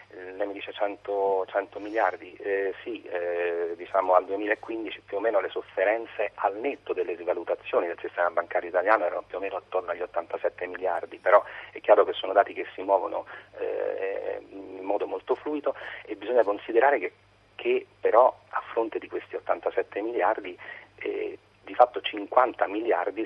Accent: native